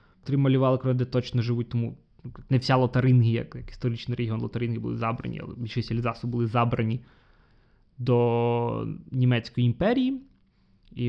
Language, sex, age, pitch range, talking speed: Ukrainian, male, 20-39, 115-140 Hz, 135 wpm